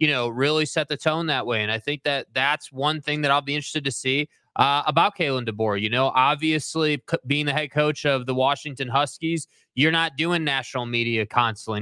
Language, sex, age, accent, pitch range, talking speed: English, male, 20-39, American, 140-165 Hz, 215 wpm